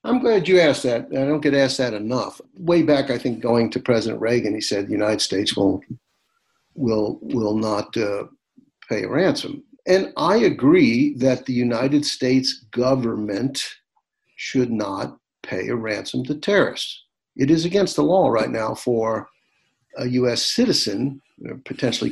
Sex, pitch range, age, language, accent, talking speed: male, 115-190 Hz, 60-79, English, American, 170 wpm